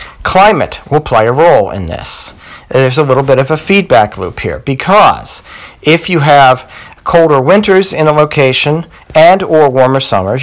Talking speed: 165 wpm